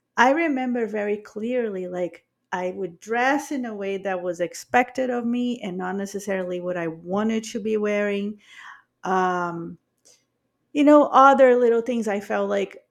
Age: 40-59